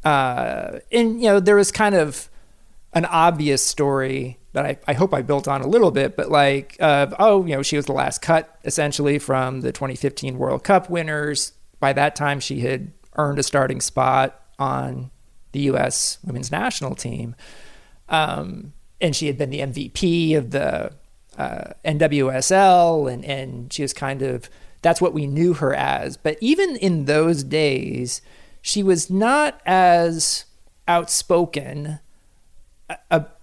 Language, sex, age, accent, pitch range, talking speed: English, male, 40-59, American, 135-175 Hz, 160 wpm